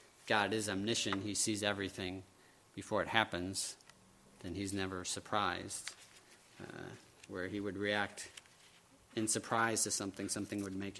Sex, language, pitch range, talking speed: male, English, 95-110 Hz, 135 wpm